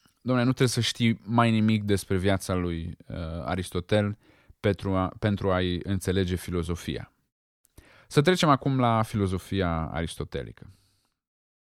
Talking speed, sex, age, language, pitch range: 125 wpm, male, 20-39, Romanian, 95-125 Hz